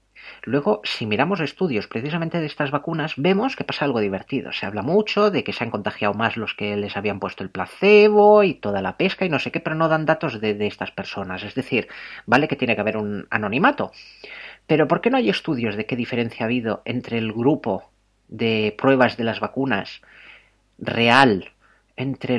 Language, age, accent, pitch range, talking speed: Spanish, 30-49, Spanish, 110-140 Hz, 200 wpm